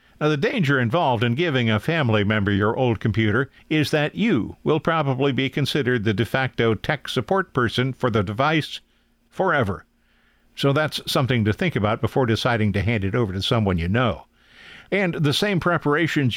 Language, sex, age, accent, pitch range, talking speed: English, male, 50-69, American, 115-150 Hz, 180 wpm